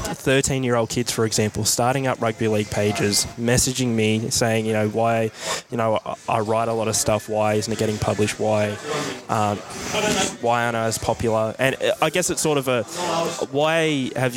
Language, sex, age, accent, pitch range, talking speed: English, male, 10-29, Australian, 115-130 Hz, 190 wpm